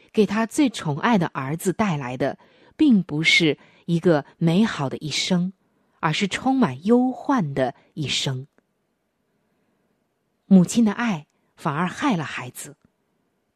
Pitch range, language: 165-225 Hz, Chinese